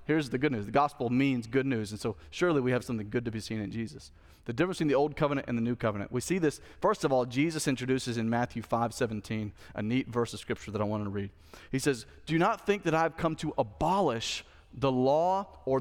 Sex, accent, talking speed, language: male, American, 250 wpm, English